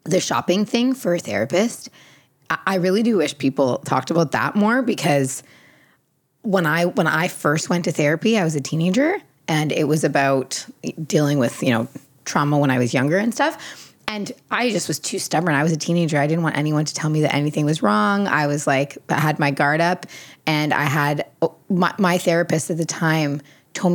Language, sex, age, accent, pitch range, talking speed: English, female, 20-39, American, 145-190 Hz, 205 wpm